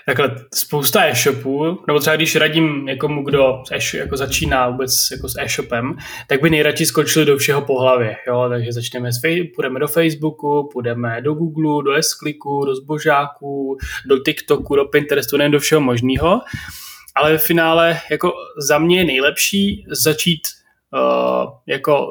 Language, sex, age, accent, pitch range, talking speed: Czech, male, 20-39, native, 125-150 Hz, 155 wpm